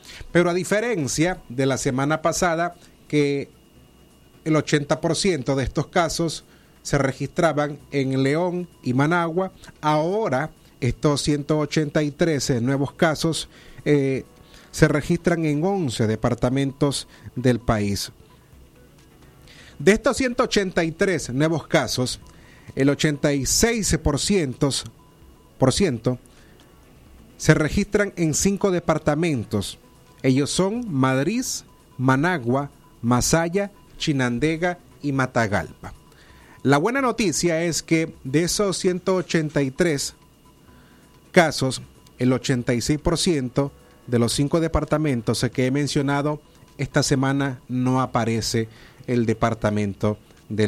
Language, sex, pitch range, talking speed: Spanish, male, 125-170 Hz, 90 wpm